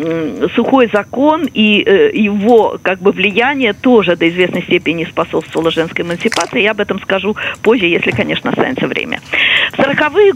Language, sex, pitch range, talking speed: Russian, female, 180-240 Hz, 145 wpm